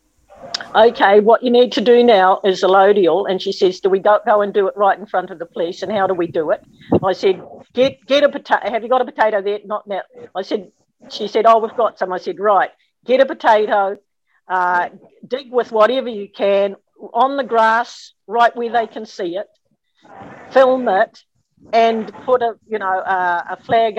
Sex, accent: female, Australian